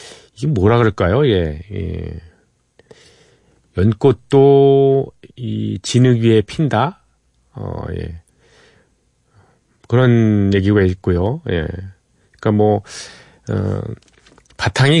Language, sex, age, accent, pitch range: Korean, male, 40-59, native, 95-125 Hz